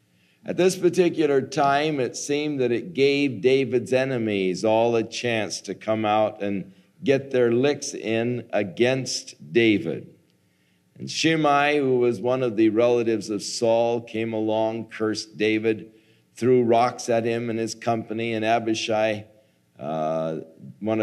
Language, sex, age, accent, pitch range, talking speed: English, male, 50-69, American, 100-140 Hz, 140 wpm